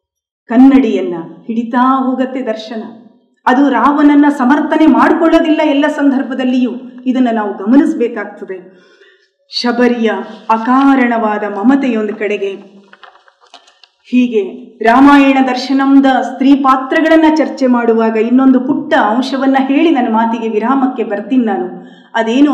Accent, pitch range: native, 225-285 Hz